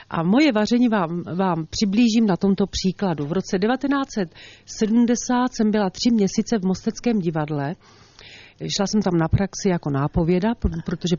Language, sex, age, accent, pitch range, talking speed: Czech, female, 40-59, native, 175-235 Hz, 145 wpm